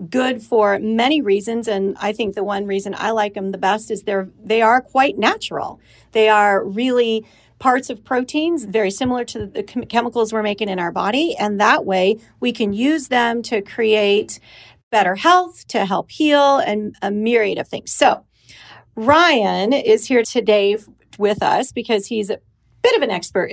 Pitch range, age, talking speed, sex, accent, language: 200-245 Hz, 40-59, 180 wpm, female, American, English